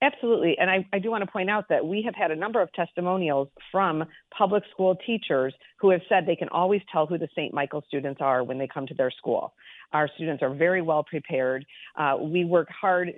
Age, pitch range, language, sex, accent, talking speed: 50-69, 155-190 Hz, English, female, American, 230 wpm